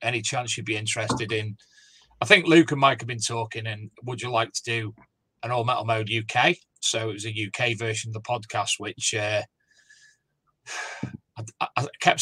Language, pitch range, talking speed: English, 110-135 Hz, 190 wpm